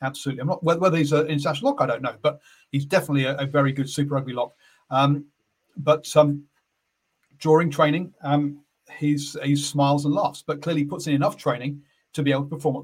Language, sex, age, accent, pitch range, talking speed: English, male, 40-59, British, 140-155 Hz, 190 wpm